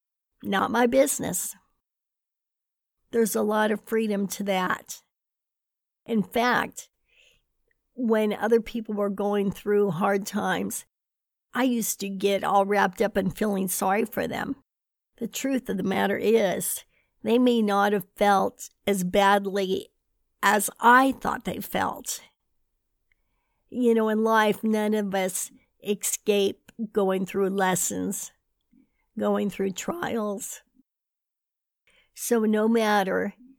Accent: American